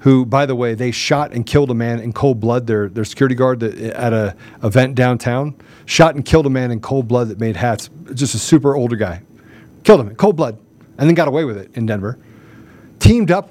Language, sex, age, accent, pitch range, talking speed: English, male, 40-59, American, 125-180 Hz, 235 wpm